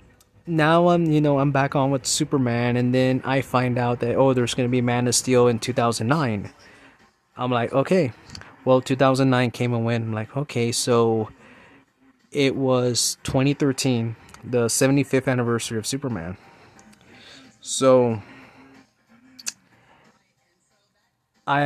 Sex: male